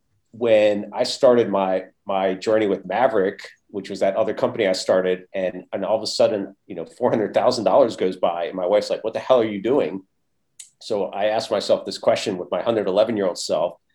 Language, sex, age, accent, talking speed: English, male, 40-59, American, 220 wpm